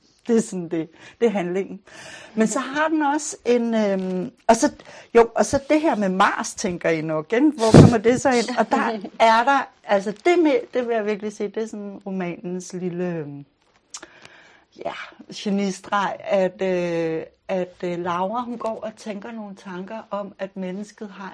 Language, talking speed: Danish, 165 wpm